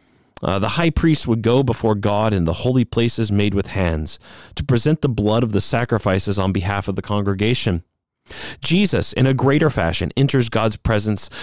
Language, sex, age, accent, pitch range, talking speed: English, male, 40-59, American, 95-130 Hz, 185 wpm